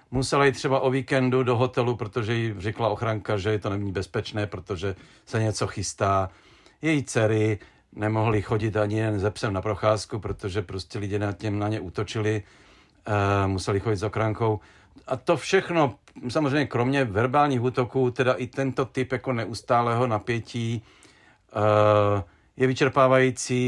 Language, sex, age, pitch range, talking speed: Czech, male, 50-69, 110-135 Hz, 145 wpm